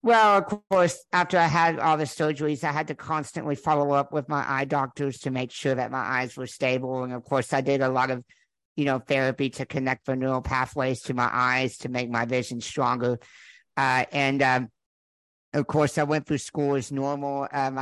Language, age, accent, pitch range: English, 50-69, American, 130-150 Hz